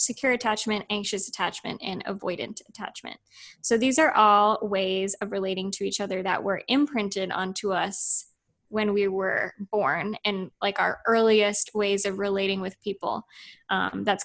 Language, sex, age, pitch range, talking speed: English, female, 20-39, 195-215 Hz, 155 wpm